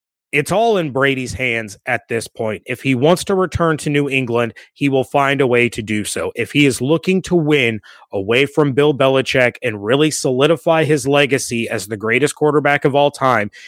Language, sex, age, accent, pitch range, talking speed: English, male, 30-49, American, 125-155 Hz, 200 wpm